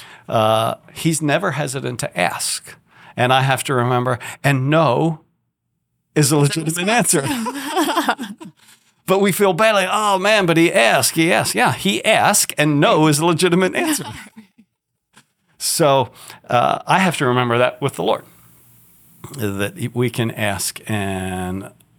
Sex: male